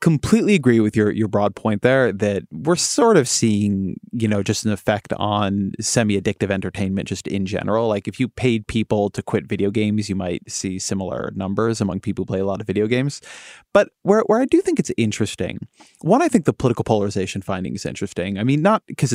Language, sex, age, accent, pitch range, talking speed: English, male, 30-49, American, 100-120 Hz, 215 wpm